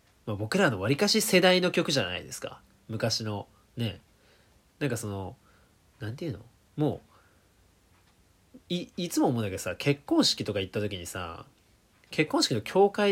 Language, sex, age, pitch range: Japanese, male, 20-39, 100-150 Hz